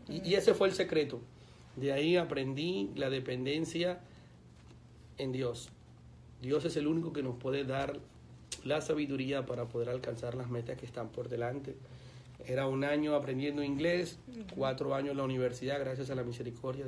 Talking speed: 160 wpm